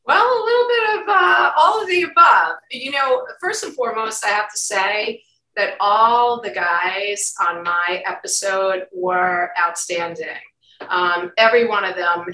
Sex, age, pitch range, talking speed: female, 40-59, 190-255 Hz, 160 wpm